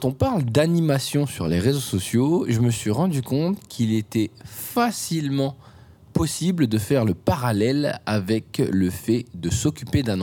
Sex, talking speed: male, 160 wpm